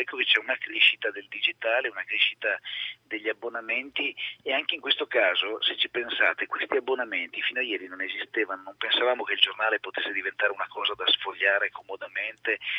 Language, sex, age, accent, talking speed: Italian, male, 40-59, native, 180 wpm